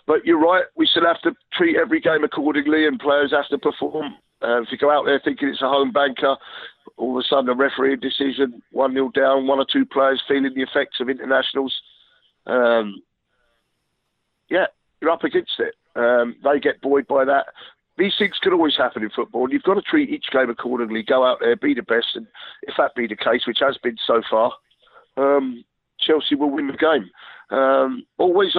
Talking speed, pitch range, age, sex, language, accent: 200 wpm, 120-155 Hz, 50-69, male, English, British